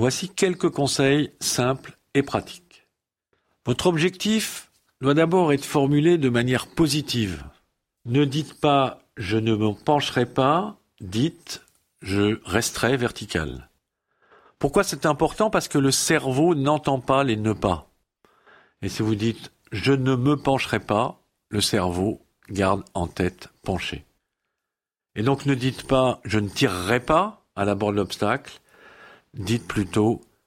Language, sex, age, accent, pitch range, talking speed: French, male, 50-69, French, 110-150 Hz, 140 wpm